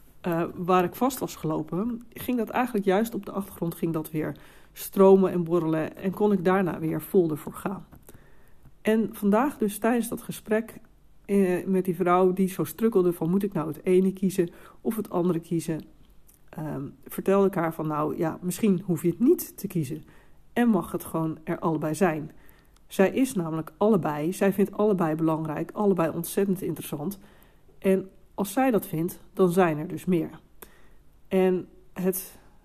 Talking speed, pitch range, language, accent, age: 175 wpm, 170-205 Hz, Dutch, Dutch, 40-59